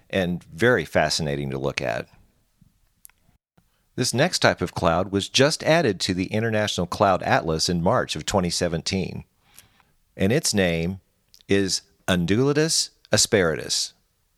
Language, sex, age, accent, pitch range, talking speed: English, male, 50-69, American, 90-110 Hz, 120 wpm